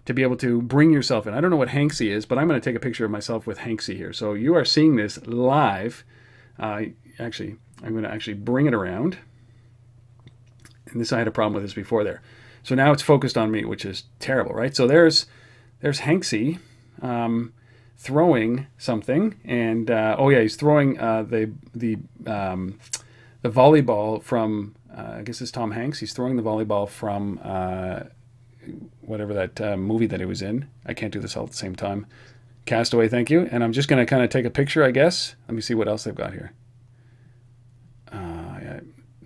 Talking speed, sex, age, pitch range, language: 205 wpm, male, 40-59, 115-130 Hz, English